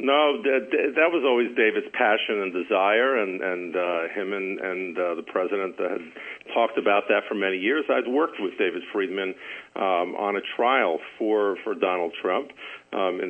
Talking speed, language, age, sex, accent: 175 wpm, English, 50-69, male, American